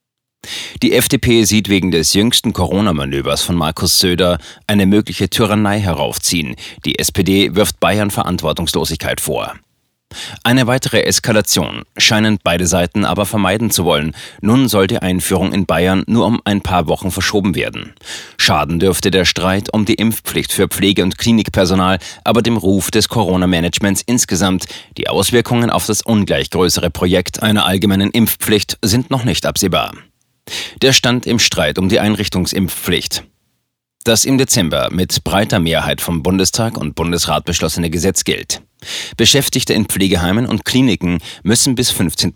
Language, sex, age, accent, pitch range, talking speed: German, male, 30-49, German, 90-110 Hz, 145 wpm